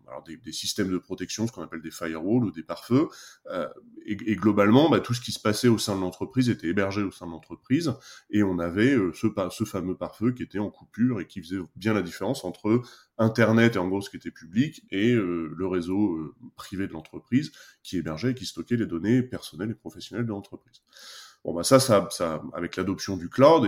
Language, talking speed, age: French, 225 wpm, 20-39